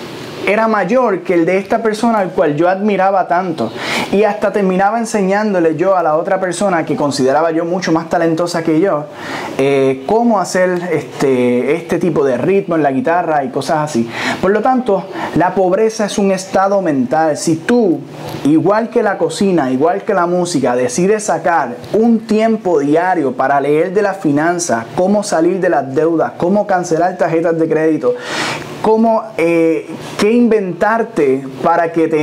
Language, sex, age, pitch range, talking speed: Spanish, male, 20-39, 155-205 Hz, 165 wpm